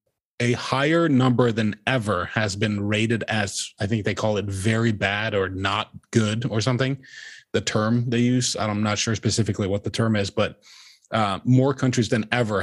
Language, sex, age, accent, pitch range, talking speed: English, male, 20-39, American, 105-120 Hz, 185 wpm